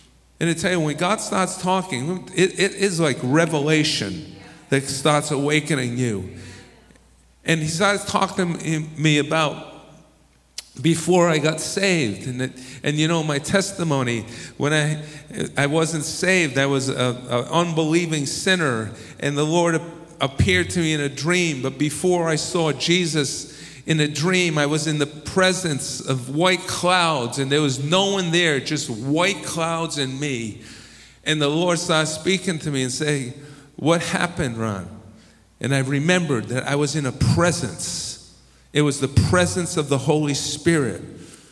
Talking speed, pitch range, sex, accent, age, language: 160 wpm, 140-170 Hz, male, American, 50-69, English